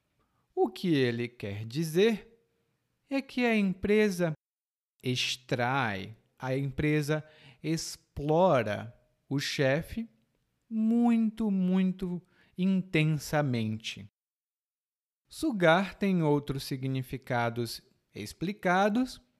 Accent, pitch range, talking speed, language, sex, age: Brazilian, 130-205 Hz, 70 wpm, Portuguese, male, 40-59